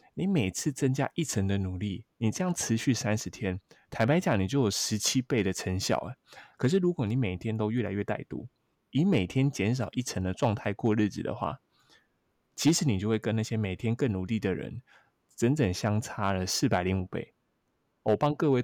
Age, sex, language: 20-39, male, Chinese